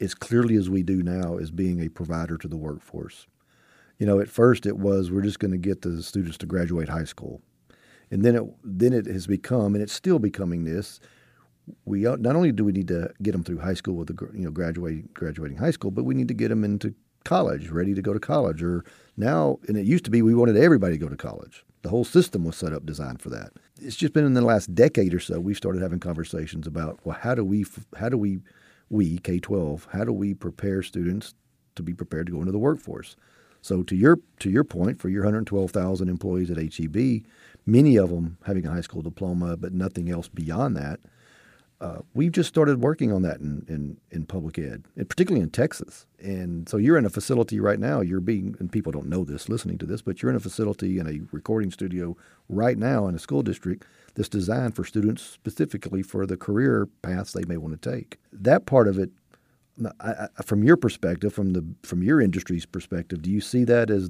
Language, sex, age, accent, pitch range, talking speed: English, male, 40-59, American, 85-110 Hz, 225 wpm